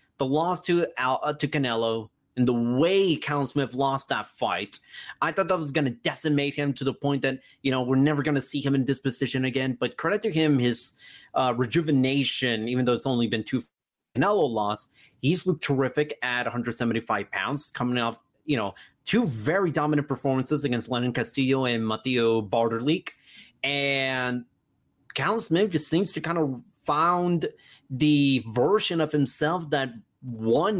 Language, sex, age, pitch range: English, male, 30-49, 130-155 Hz